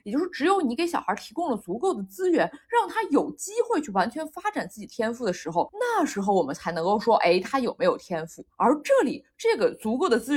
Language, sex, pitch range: Chinese, female, 230-360 Hz